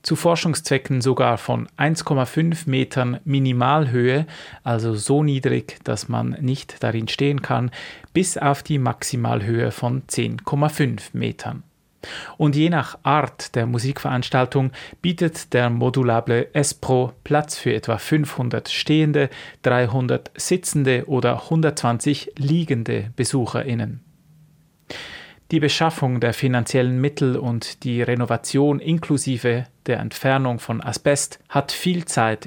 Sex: male